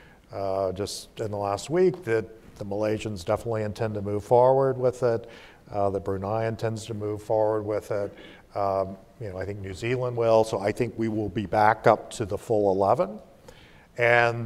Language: English